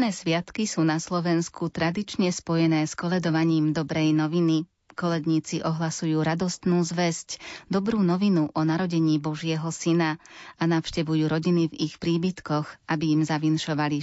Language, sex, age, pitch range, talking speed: Slovak, female, 30-49, 155-170 Hz, 130 wpm